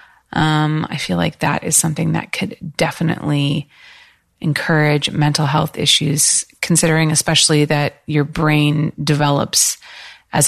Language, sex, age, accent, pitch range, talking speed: English, female, 30-49, American, 150-200 Hz, 120 wpm